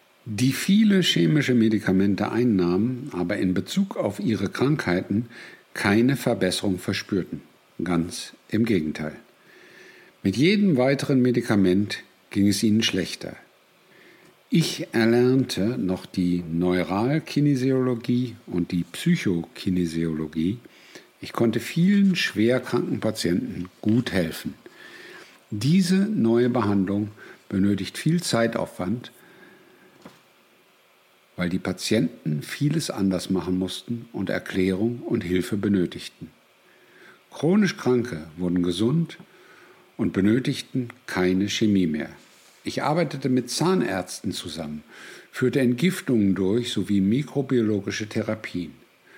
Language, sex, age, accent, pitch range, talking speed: German, male, 60-79, German, 95-130 Hz, 95 wpm